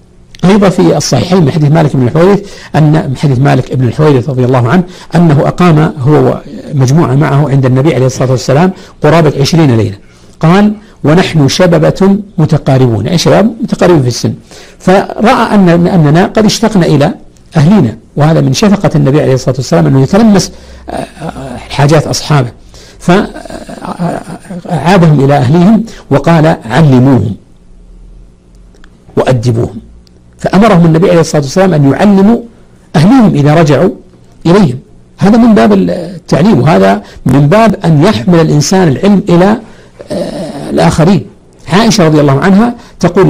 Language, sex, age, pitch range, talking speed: Arabic, male, 60-79, 130-185 Hz, 125 wpm